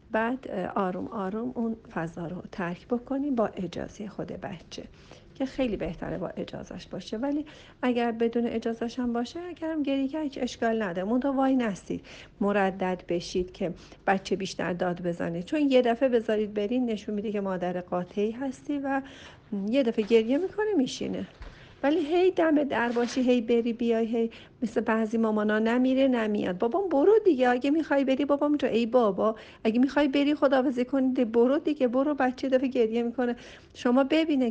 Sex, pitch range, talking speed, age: female, 200-265 Hz, 160 wpm, 50-69